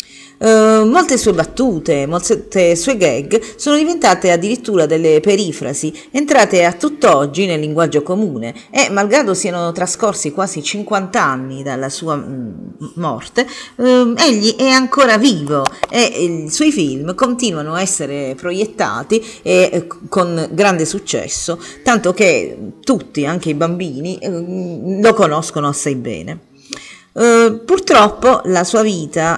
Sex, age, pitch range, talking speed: female, 40-59, 155-220 Hz, 115 wpm